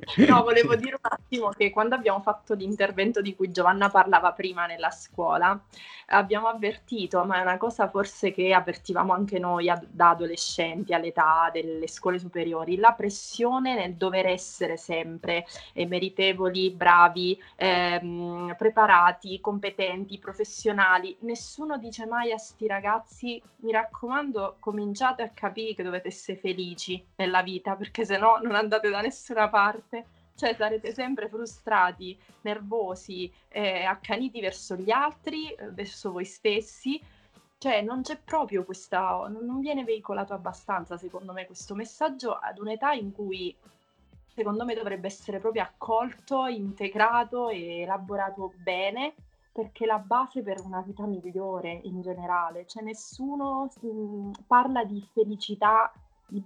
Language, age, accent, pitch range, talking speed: Italian, 20-39, native, 185-225 Hz, 135 wpm